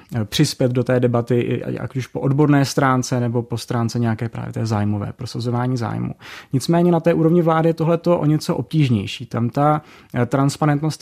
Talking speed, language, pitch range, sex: 170 wpm, Czech, 130-155 Hz, male